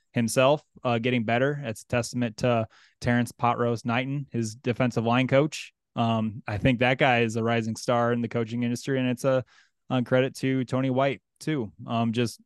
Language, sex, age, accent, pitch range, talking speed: English, male, 20-39, American, 110-125 Hz, 190 wpm